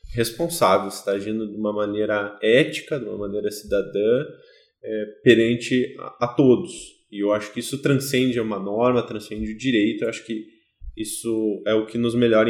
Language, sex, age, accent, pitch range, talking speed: Portuguese, male, 20-39, Brazilian, 110-150 Hz, 175 wpm